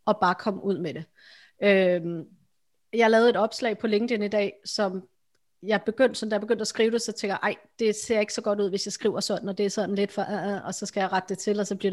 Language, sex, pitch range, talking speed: Danish, female, 195-240 Hz, 275 wpm